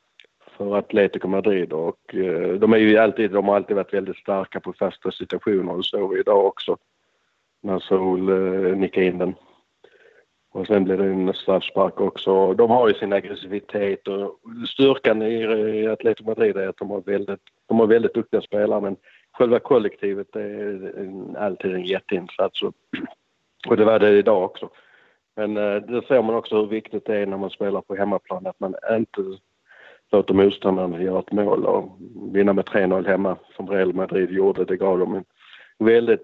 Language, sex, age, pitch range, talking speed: Swedish, male, 50-69, 95-110 Hz, 170 wpm